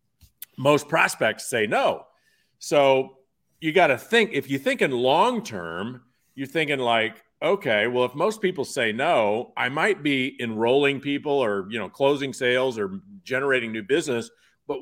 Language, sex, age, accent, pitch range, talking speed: English, male, 50-69, American, 115-145 Hz, 160 wpm